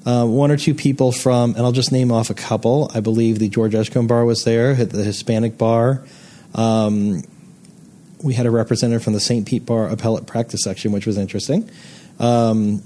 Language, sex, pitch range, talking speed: English, male, 110-145 Hz, 190 wpm